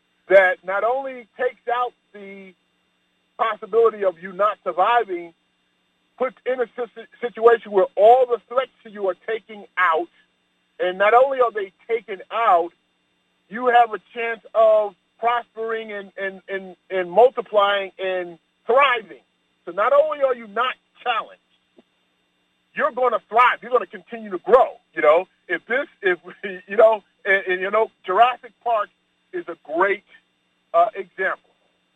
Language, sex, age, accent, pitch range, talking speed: English, male, 40-59, American, 165-240 Hz, 150 wpm